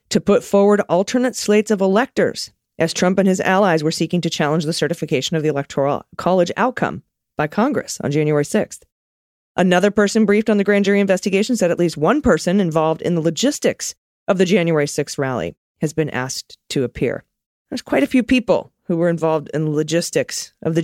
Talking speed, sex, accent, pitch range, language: 195 wpm, female, American, 155-210 Hz, English